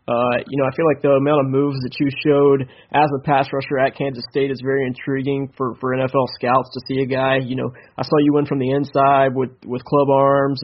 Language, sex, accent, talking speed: English, male, American, 250 wpm